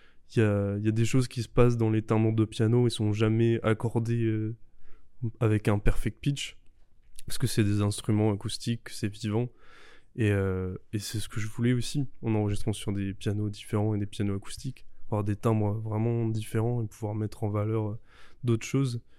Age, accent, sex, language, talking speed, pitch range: 20-39, French, male, French, 200 wpm, 105-120 Hz